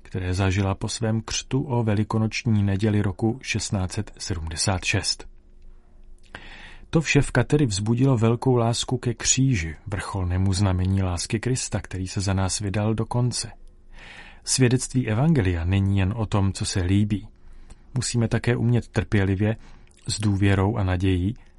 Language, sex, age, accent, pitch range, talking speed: Czech, male, 40-59, native, 95-120 Hz, 130 wpm